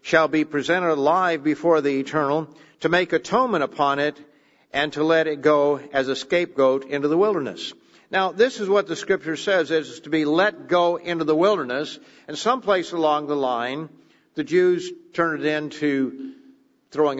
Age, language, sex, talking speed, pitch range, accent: 50-69, English, male, 170 wpm, 125-155 Hz, American